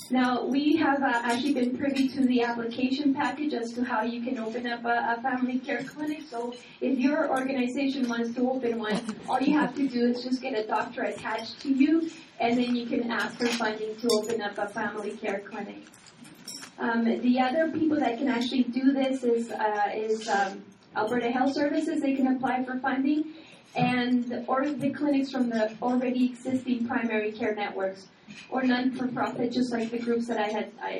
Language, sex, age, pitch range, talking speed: English, female, 30-49, 225-265 Hz, 195 wpm